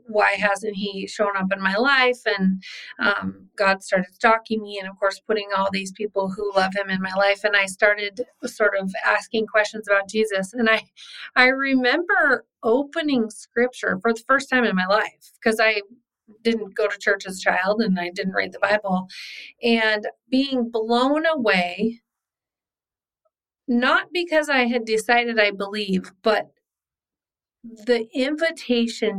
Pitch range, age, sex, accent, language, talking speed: 205-245 Hz, 30-49, female, American, English, 160 wpm